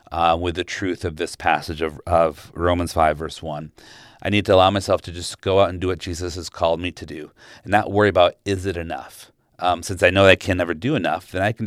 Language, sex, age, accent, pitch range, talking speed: English, male, 40-59, American, 85-100 Hz, 255 wpm